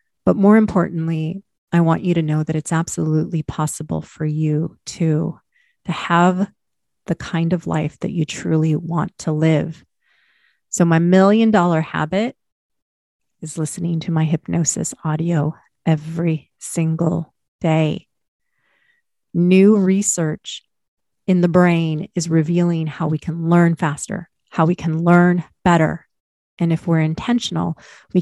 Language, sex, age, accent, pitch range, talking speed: English, female, 30-49, American, 160-190 Hz, 135 wpm